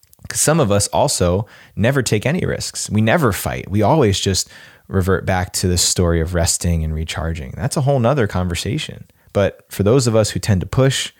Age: 20-39